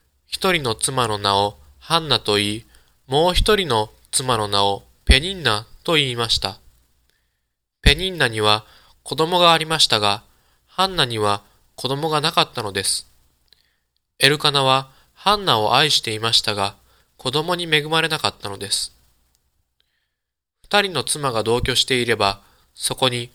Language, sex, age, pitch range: Japanese, male, 20-39, 100-140 Hz